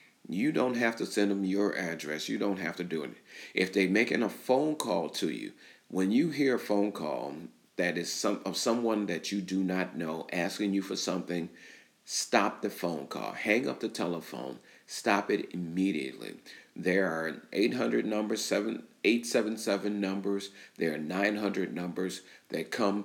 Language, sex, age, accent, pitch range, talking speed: English, male, 40-59, American, 90-110 Hz, 180 wpm